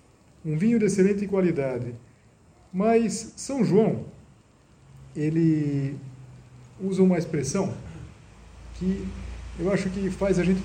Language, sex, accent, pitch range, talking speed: Portuguese, male, Brazilian, 115-185 Hz, 105 wpm